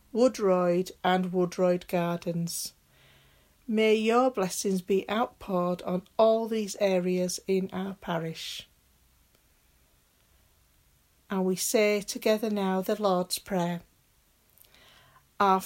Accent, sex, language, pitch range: British, female, English, 180-220 Hz